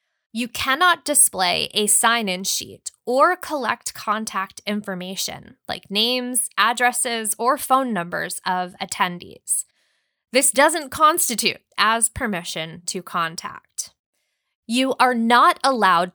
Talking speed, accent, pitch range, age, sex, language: 110 wpm, American, 195-265 Hz, 20-39, female, English